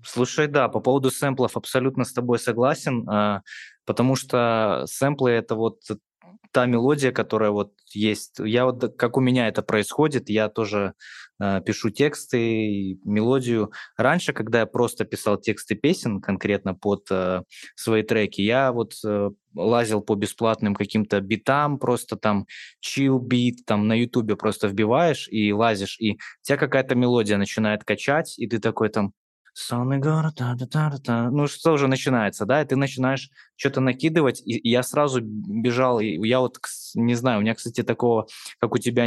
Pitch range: 110-130 Hz